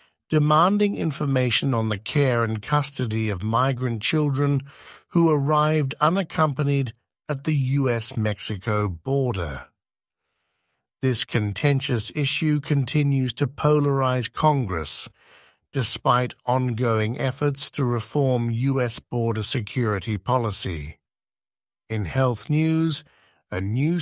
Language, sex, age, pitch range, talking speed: English, male, 60-79, 115-145 Hz, 95 wpm